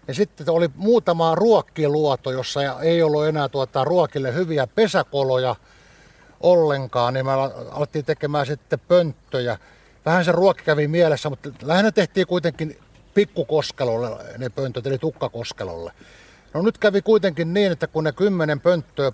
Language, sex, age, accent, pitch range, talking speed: Finnish, male, 60-79, native, 125-165 Hz, 140 wpm